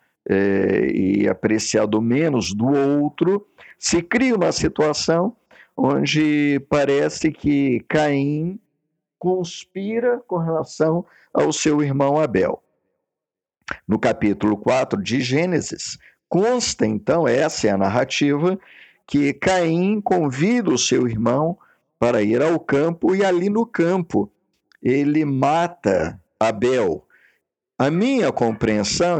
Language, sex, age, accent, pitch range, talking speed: Portuguese, male, 50-69, Brazilian, 130-175 Hz, 105 wpm